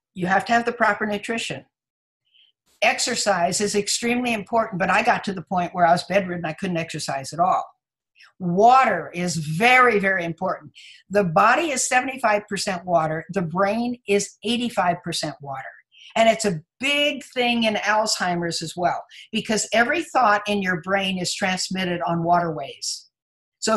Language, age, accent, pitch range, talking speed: English, 60-79, American, 175-225 Hz, 155 wpm